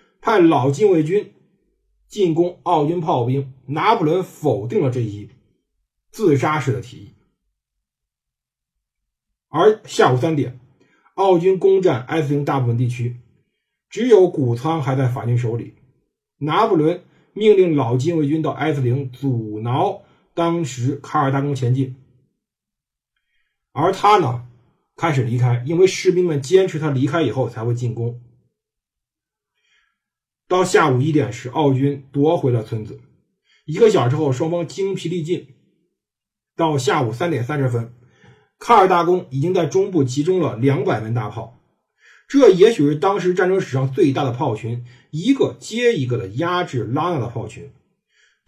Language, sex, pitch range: Chinese, male, 125-175 Hz